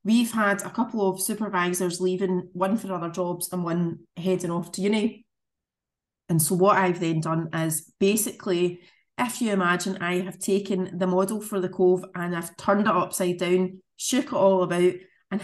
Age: 30-49